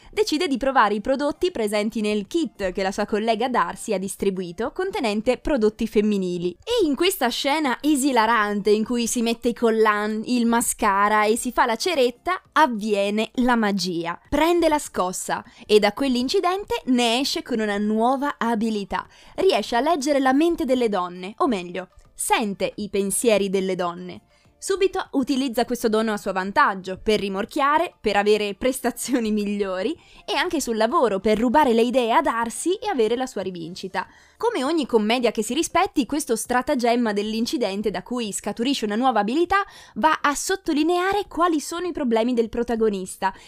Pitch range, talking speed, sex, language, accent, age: 210-290 Hz, 160 wpm, female, Italian, native, 20-39